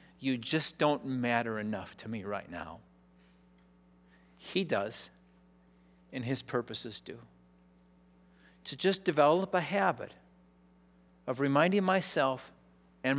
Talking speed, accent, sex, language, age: 110 wpm, American, male, English, 50-69